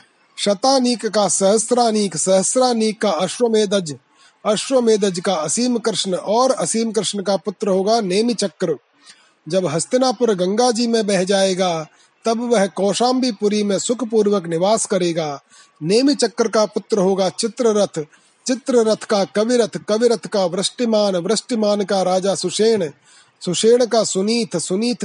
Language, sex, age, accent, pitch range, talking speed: Hindi, male, 30-49, native, 190-230 Hz, 120 wpm